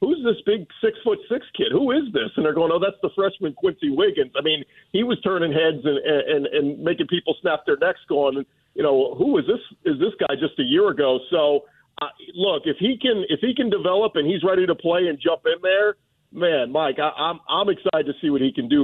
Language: English